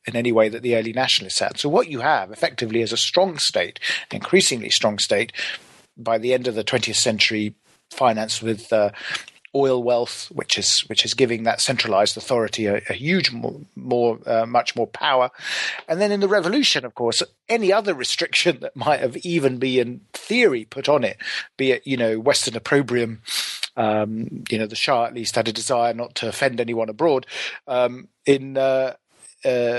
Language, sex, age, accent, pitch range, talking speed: English, male, 40-59, British, 115-145 Hz, 185 wpm